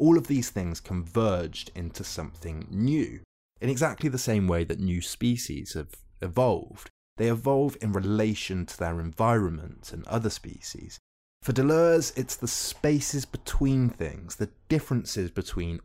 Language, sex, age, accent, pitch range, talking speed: English, male, 30-49, British, 85-120 Hz, 145 wpm